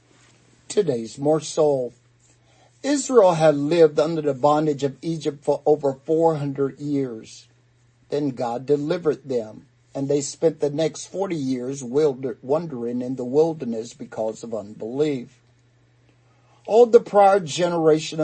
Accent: American